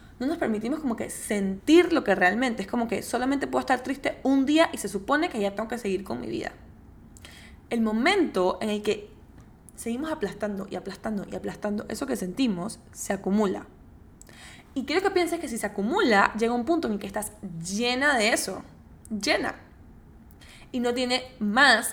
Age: 10-29